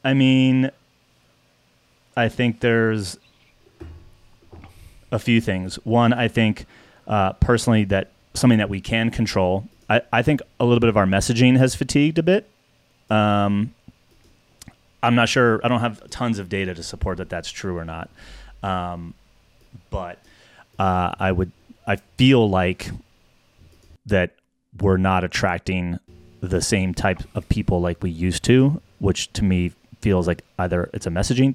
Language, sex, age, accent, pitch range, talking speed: English, male, 30-49, American, 95-115 Hz, 150 wpm